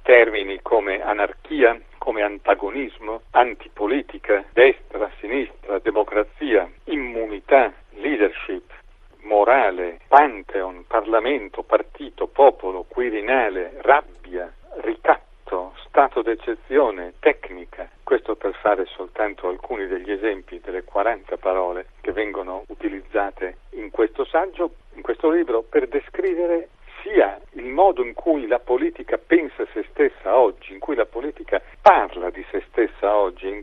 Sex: male